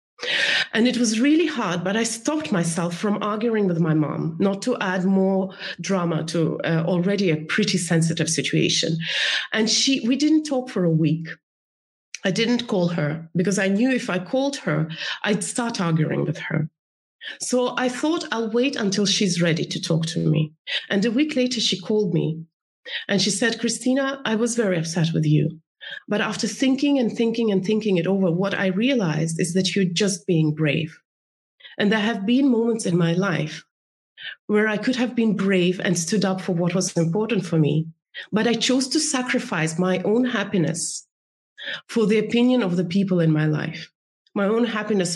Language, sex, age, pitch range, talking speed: English, female, 30-49, 170-230 Hz, 185 wpm